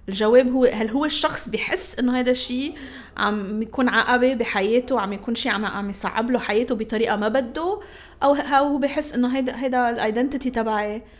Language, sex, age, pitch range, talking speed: Arabic, female, 30-49, 225-270 Hz, 165 wpm